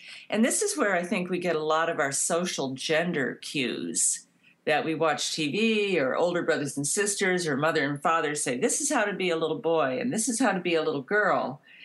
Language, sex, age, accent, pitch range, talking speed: English, female, 50-69, American, 160-215 Hz, 235 wpm